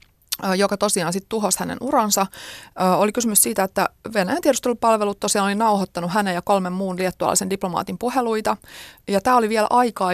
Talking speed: 160 wpm